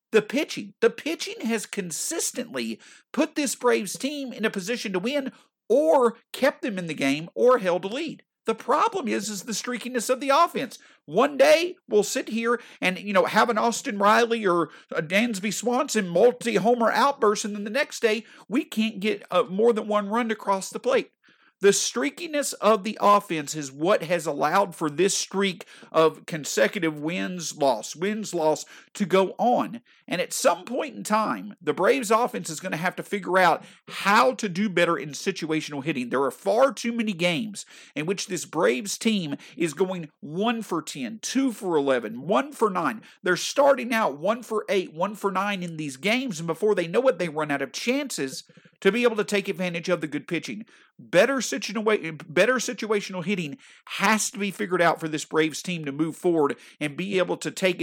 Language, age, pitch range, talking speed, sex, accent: English, 50-69, 175-235 Hz, 185 wpm, male, American